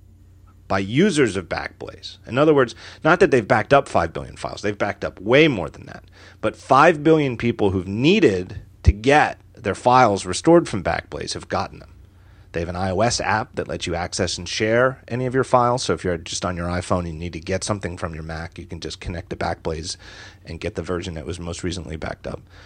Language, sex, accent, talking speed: English, male, American, 225 wpm